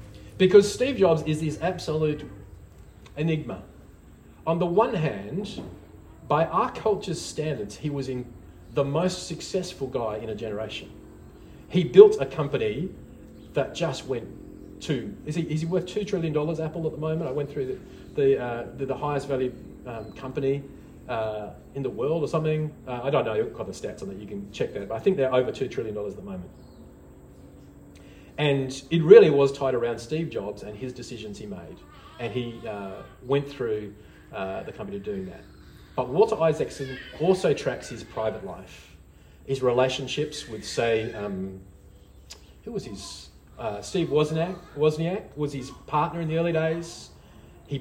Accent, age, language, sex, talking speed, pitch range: Australian, 40-59, English, male, 175 wpm, 105-160 Hz